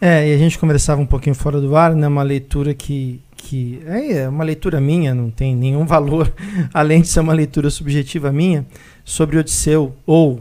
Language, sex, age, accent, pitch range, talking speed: Portuguese, male, 50-69, Brazilian, 140-170 Hz, 190 wpm